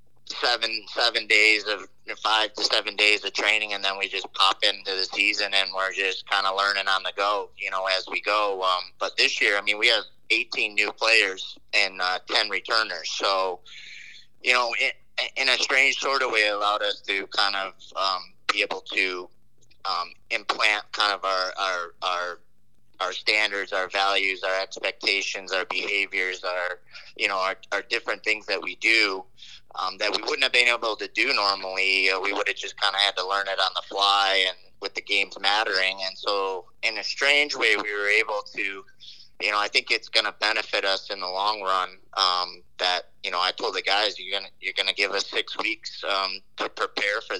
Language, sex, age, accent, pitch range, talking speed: English, male, 30-49, American, 95-105 Hz, 210 wpm